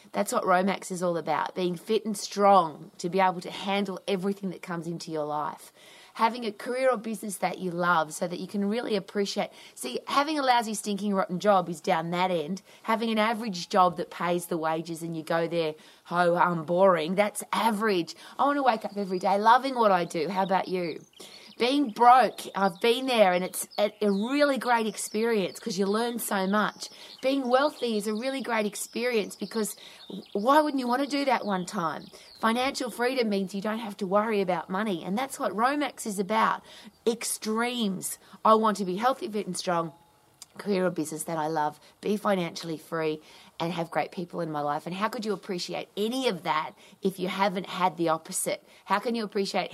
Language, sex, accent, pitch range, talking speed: English, female, Australian, 175-215 Hz, 205 wpm